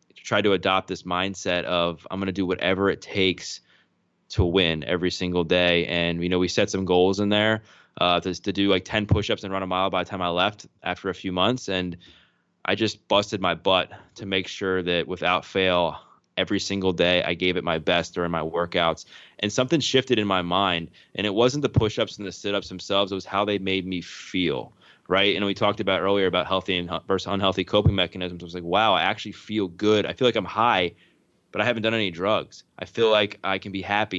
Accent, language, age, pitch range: American, English, 20-39, 90-100 Hz